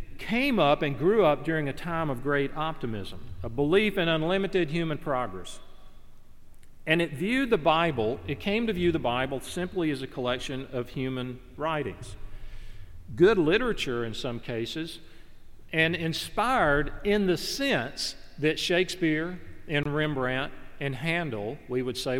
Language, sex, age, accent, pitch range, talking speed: English, male, 40-59, American, 120-170 Hz, 145 wpm